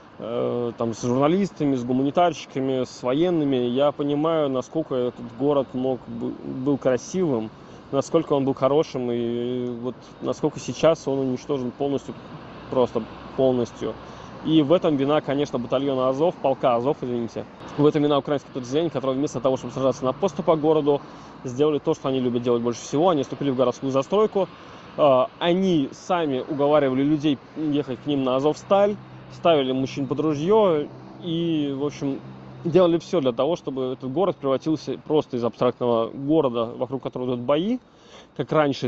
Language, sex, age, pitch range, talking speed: Russian, male, 20-39, 125-155 Hz, 155 wpm